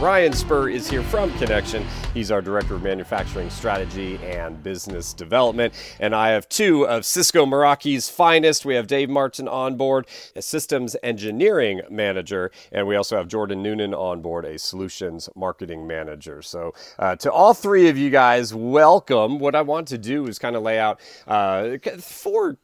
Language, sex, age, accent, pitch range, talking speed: English, male, 30-49, American, 95-135 Hz, 175 wpm